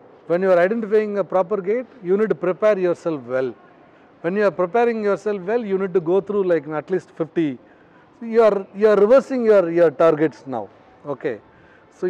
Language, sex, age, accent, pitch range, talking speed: Tamil, male, 30-49, native, 155-200 Hz, 195 wpm